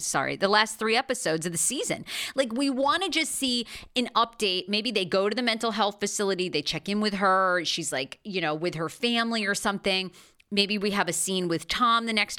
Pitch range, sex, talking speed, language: 180-245 Hz, female, 230 wpm, English